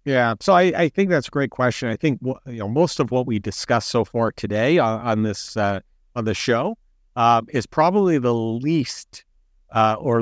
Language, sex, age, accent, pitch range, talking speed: English, male, 50-69, American, 105-130 Hz, 205 wpm